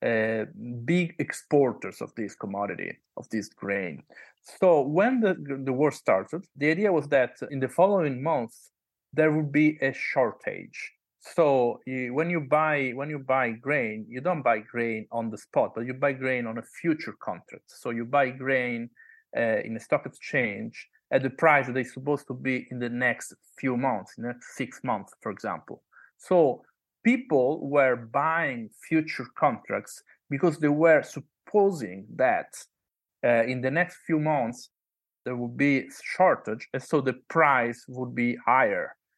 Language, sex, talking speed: English, male, 165 wpm